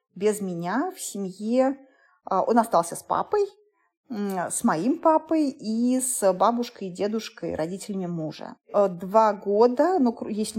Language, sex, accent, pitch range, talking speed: Russian, female, native, 195-260 Hz, 125 wpm